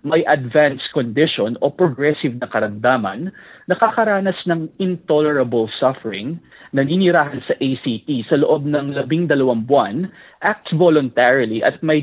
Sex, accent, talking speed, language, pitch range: male, native, 125 wpm, Filipino, 135-175 Hz